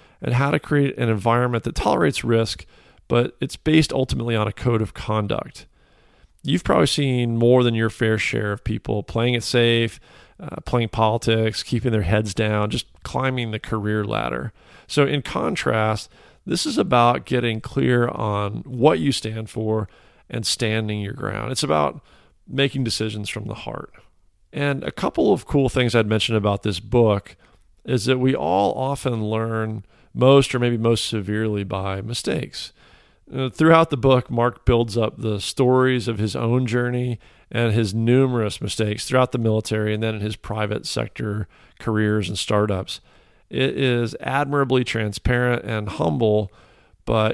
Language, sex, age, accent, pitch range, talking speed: English, male, 40-59, American, 105-125 Hz, 160 wpm